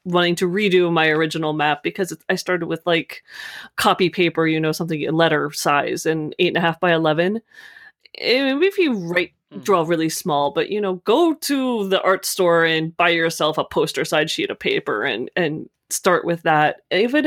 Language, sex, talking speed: English, female, 195 wpm